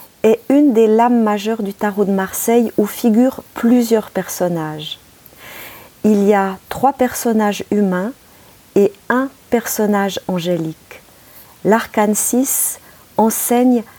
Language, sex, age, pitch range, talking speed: French, female, 40-59, 190-225 Hz, 110 wpm